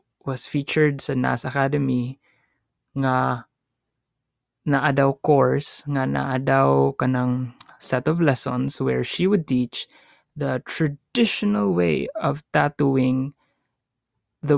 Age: 20-39